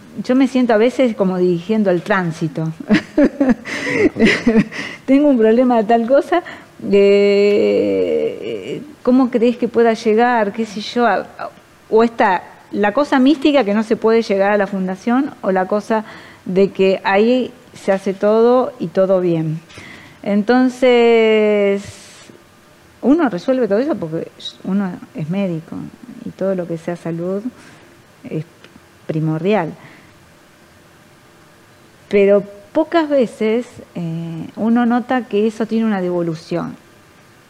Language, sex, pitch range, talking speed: Spanish, female, 190-255 Hz, 125 wpm